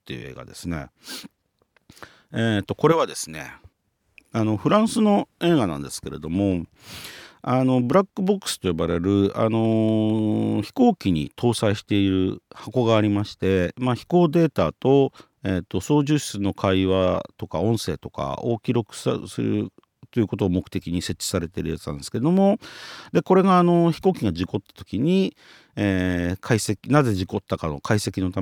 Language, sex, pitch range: Japanese, male, 95-140 Hz